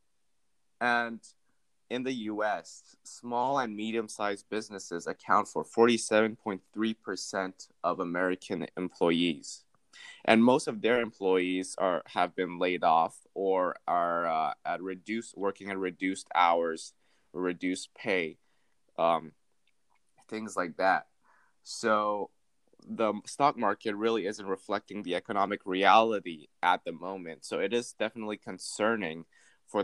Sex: male